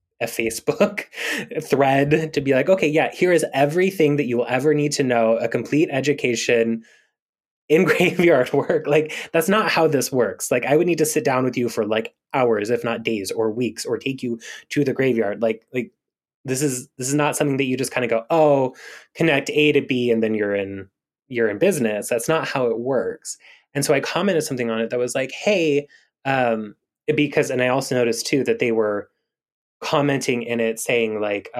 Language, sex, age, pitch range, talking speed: English, male, 20-39, 115-145 Hz, 210 wpm